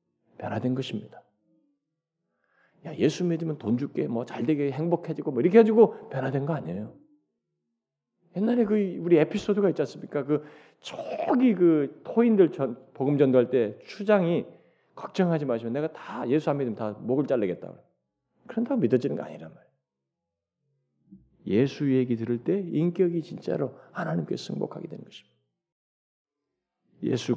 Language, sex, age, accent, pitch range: Korean, male, 40-59, native, 125-205 Hz